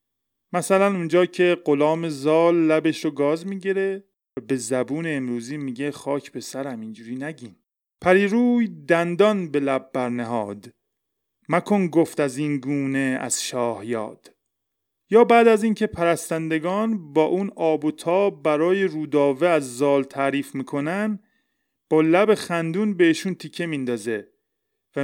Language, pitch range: Persian, 135-180 Hz